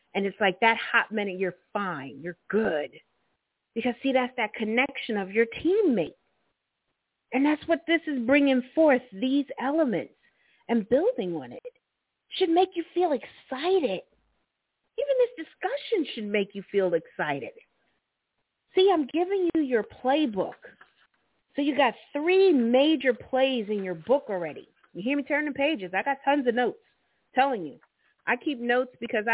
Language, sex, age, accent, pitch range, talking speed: English, female, 40-59, American, 195-275 Hz, 155 wpm